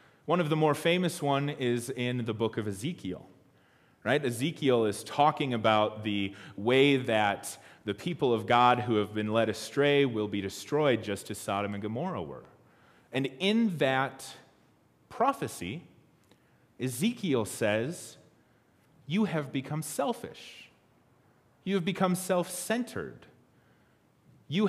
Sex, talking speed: male, 125 wpm